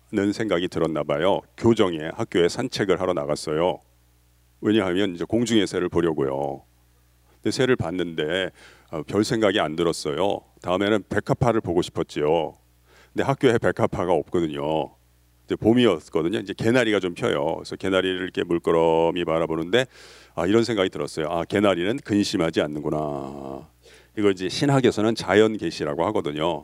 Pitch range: 75-110 Hz